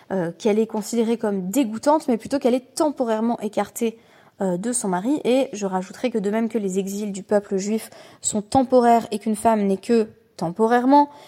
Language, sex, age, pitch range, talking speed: French, female, 20-39, 195-245 Hz, 190 wpm